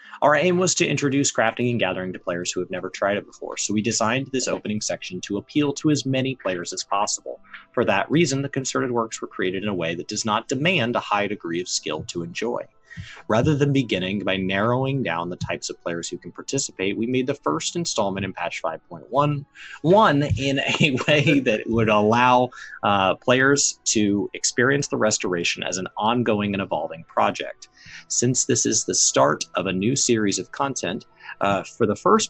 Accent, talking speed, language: American, 195 wpm, English